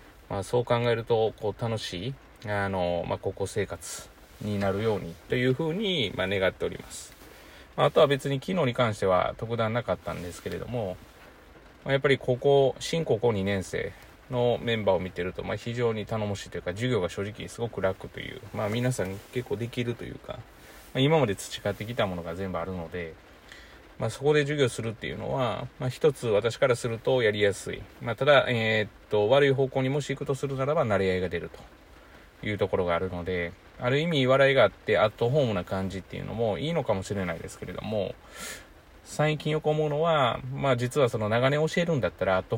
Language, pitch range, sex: Japanese, 95-135 Hz, male